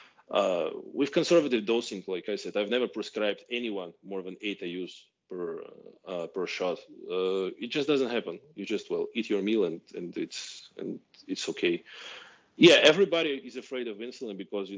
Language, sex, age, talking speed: English, male, 20-39, 180 wpm